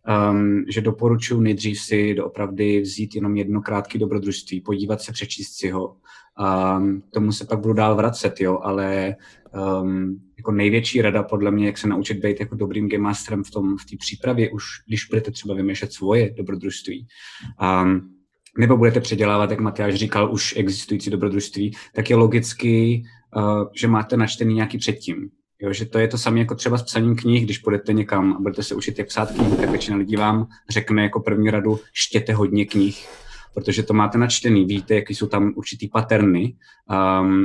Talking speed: 175 wpm